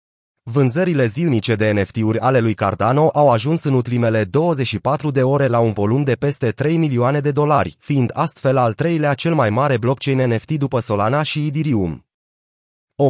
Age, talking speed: 30-49, 170 wpm